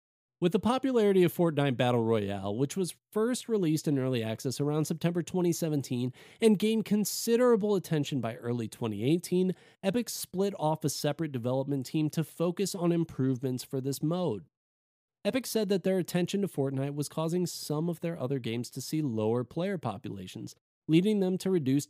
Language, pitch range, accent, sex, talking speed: English, 125-175 Hz, American, male, 165 wpm